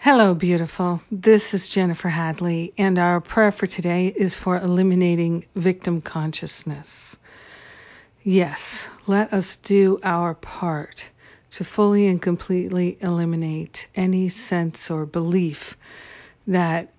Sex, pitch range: female, 170-190 Hz